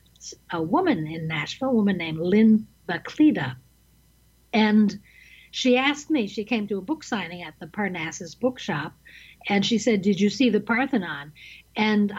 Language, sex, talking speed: English, female, 160 wpm